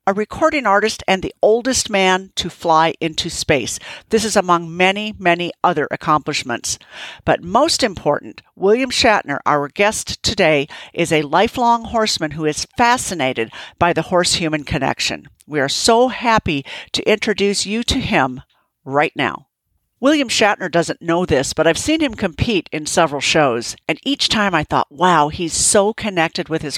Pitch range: 160-225 Hz